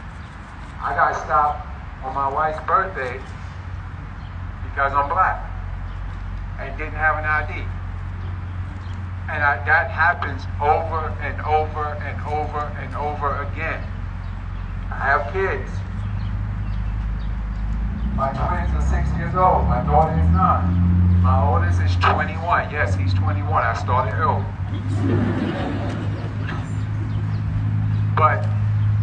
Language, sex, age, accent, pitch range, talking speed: English, male, 50-69, American, 95-105 Hz, 105 wpm